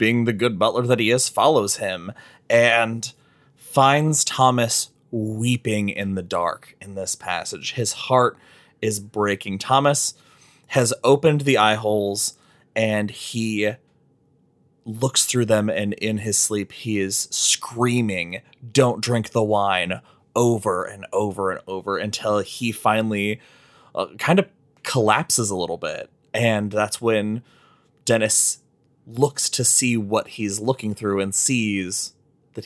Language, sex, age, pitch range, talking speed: English, male, 20-39, 105-135 Hz, 135 wpm